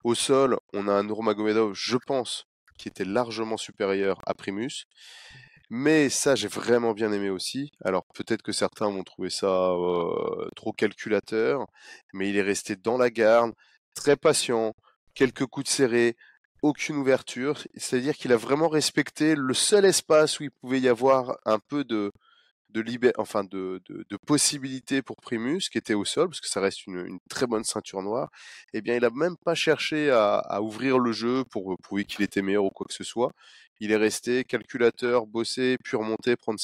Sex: male